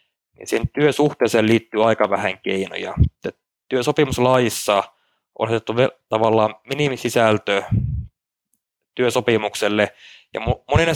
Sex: male